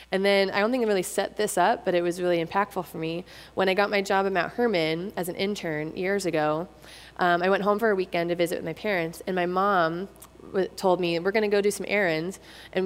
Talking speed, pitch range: 260 wpm, 170-195 Hz